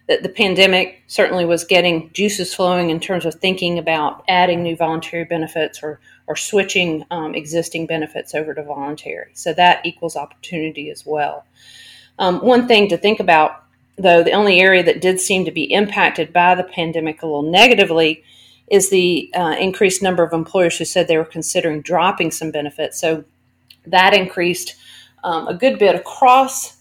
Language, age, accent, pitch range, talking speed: English, 40-59, American, 160-190 Hz, 170 wpm